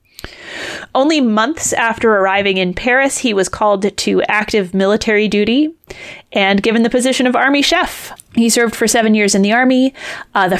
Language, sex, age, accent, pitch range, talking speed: English, female, 30-49, American, 190-235 Hz, 170 wpm